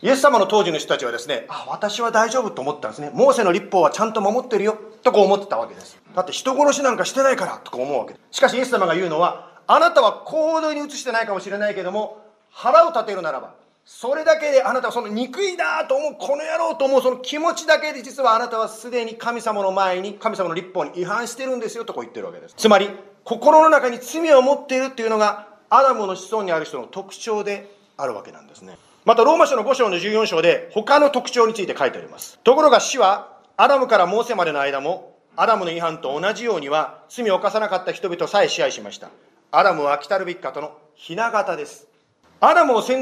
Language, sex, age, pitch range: Japanese, male, 40-59, 195-265 Hz